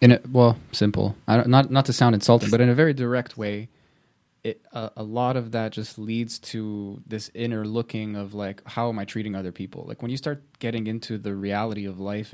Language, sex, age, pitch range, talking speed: English, male, 20-39, 100-120 Hz, 230 wpm